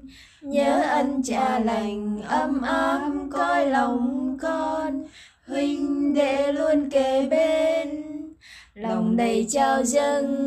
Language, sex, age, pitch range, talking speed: Vietnamese, female, 20-39, 245-305 Hz, 105 wpm